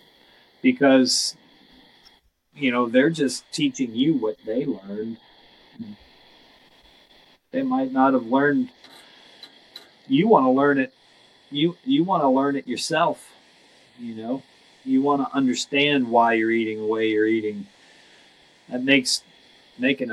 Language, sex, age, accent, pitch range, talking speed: English, male, 40-59, American, 115-160 Hz, 130 wpm